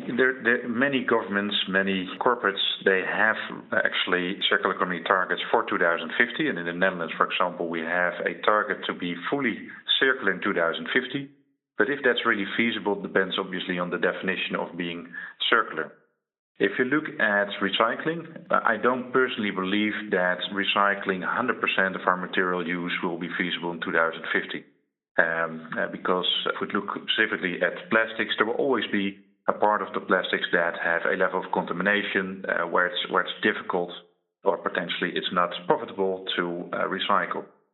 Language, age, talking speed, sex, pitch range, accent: English, 40-59, 160 wpm, male, 90-110 Hz, Dutch